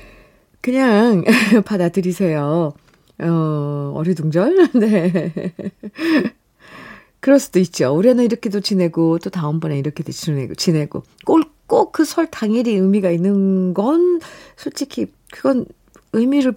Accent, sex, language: native, female, Korean